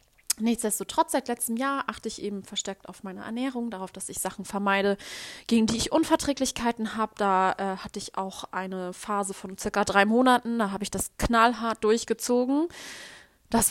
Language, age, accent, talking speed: German, 20-39, German, 170 wpm